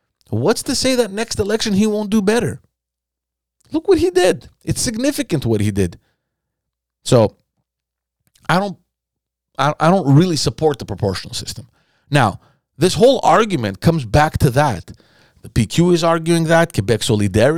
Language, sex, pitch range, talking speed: English, male, 110-165 Hz, 155 wpm